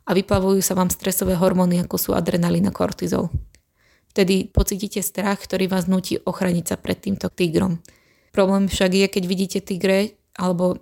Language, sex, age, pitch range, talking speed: Slovak, female, 20-39, 180-195 Hz, 155 wpm